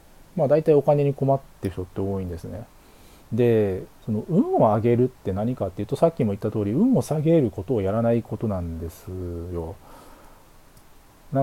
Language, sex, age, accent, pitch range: Japanese, male, 40-59, native, 100-165 Hz